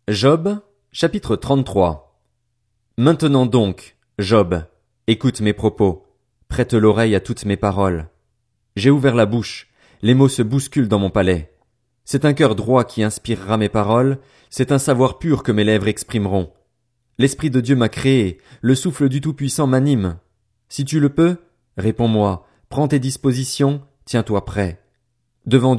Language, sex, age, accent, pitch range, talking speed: French, male, 30-49, French, 110-140 Hz, 145 wpm